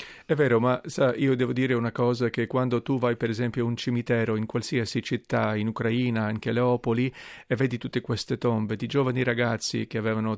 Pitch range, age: 115-130 Hz, 40-59